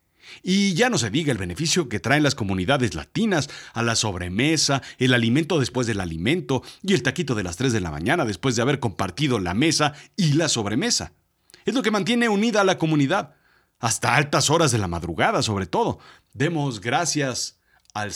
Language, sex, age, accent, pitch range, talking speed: Spanish, male, 40-59, Mexican, 115-175 Hz, 190 wpm